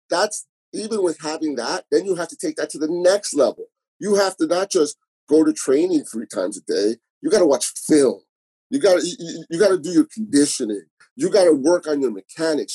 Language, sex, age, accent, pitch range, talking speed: English, male, 30-49, American, 130-210 Hz, 205 wpm